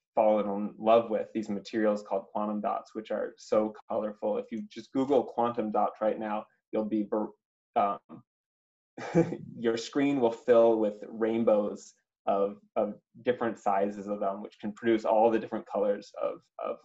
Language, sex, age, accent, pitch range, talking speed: English, male, 20-39, American, 105-115 Hz, 160 wpm